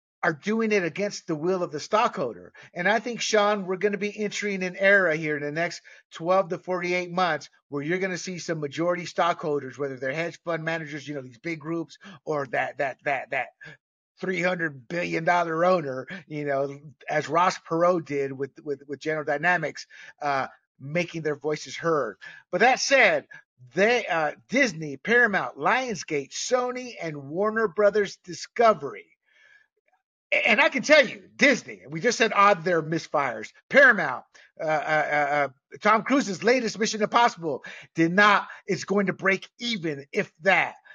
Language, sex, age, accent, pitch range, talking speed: English, male, 50-69, American, 150-205 Hz, 165 wpm